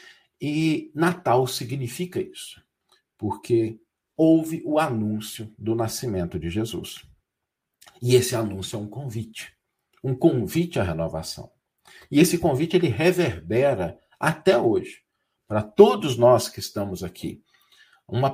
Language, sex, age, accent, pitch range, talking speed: Portuguese, male, 50-69, Brazilian, 95-150 Hz, 115 wpm